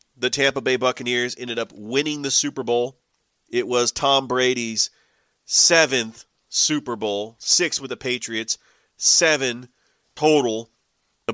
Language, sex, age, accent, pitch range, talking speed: English, male, 30-49, American, 120-140 Hz, 125 wpm